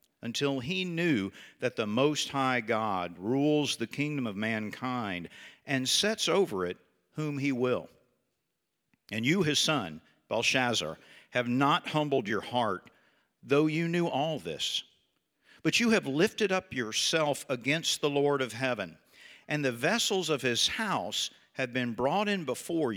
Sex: male